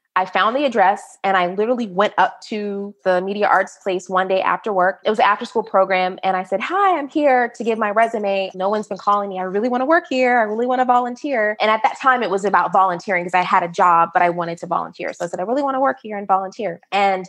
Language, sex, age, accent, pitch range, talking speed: English, female, 20-39, American, 185-230 Hz, 275 wpm